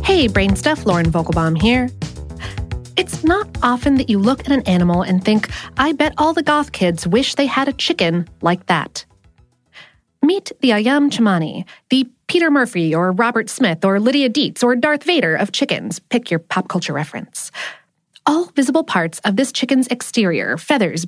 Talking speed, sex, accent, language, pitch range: 170 wpm, female, American, English, 185-285 Hz